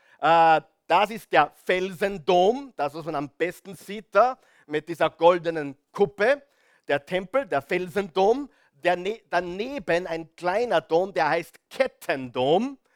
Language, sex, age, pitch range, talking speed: German, male, 50-69, 165-215 Hz, 120 wpm